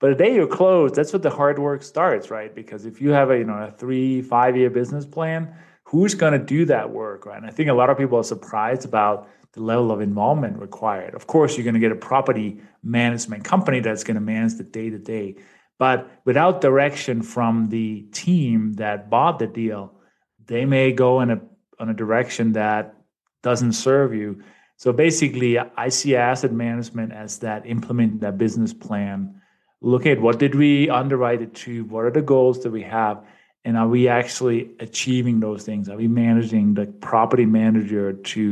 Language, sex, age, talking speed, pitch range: English, male, 30-49, 195 wpm, 110-130 Hz